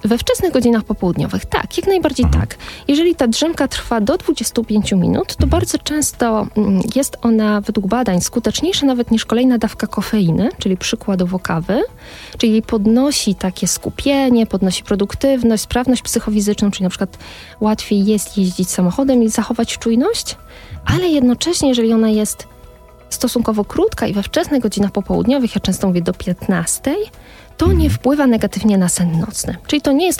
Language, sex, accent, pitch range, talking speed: Polish, female, native, 200-255 Hz, 155 wpm